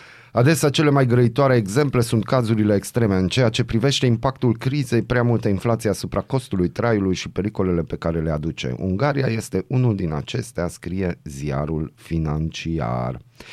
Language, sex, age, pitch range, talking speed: Romanian, male, 30-49, 85-110 Hz, 150 wpm